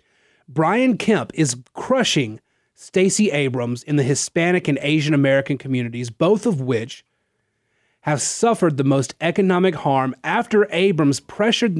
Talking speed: 125 wpm